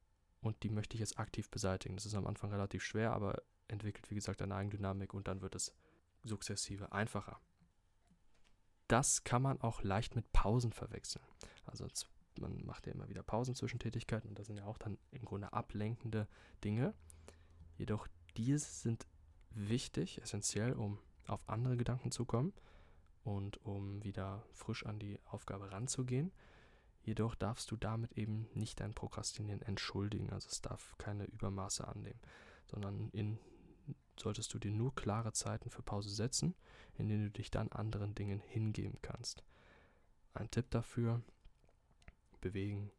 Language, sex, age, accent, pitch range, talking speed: German, male, 20-39, German, 100-115 Hz, 155 wpm